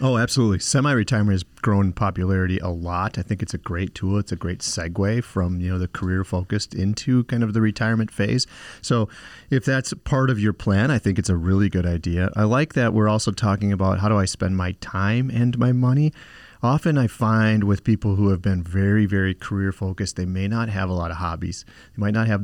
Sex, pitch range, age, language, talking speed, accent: male, 90-115 Hz, 30-49, English, 225 wpm, American